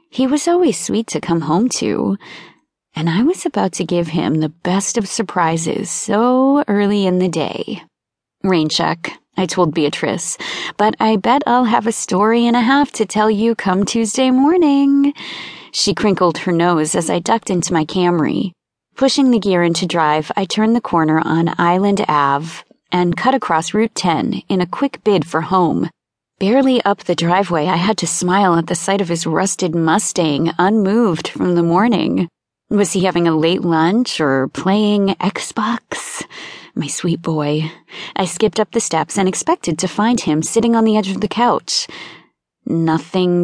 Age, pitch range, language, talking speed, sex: 30-49, 170-230 Hz, English, 175 wpm, female